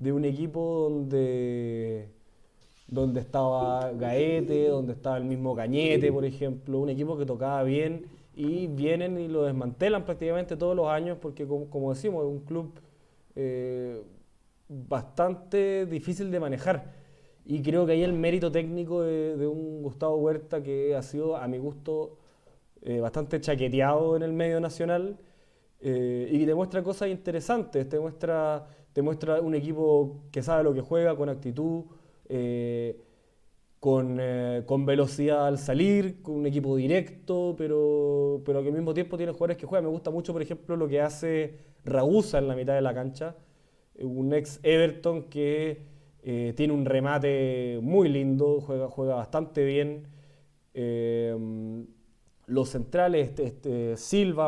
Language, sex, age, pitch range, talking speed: Spanish, male, 20-39, 135-165 Hz, 150 wpm